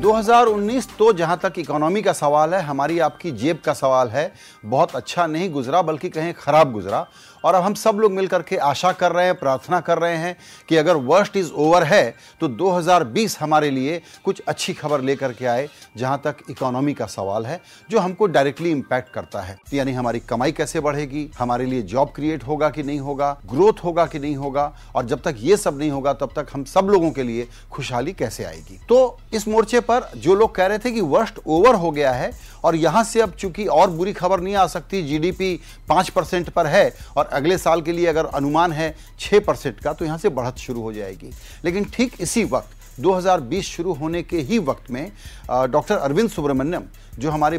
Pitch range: 140-190 Hz